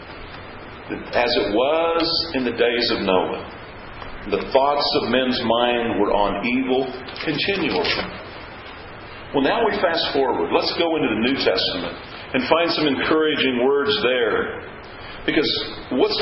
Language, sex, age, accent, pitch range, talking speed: English, male, 50-69, American, 140-190 Hz, 135 wpm